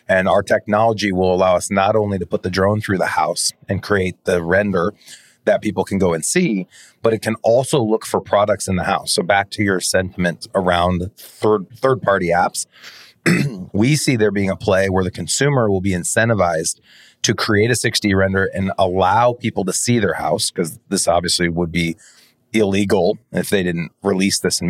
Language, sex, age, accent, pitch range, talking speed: English, male, 30-49, American, 90-110 Hz, 195 wpm